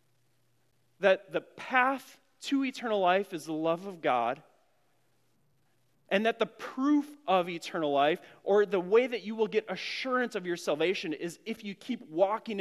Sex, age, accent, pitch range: male, 30-49, American, 155-210 Hz